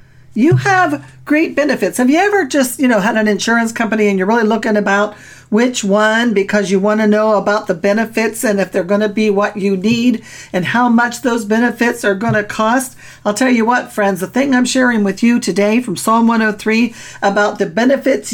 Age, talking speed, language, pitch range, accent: 50-69, 215 wpm, English, 210-270 Hz, American